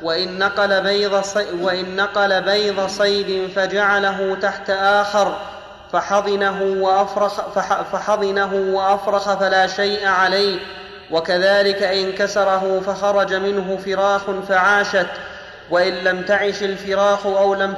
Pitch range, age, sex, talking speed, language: 190-200 Hz, 30-49, male, 90 wpm, Arabic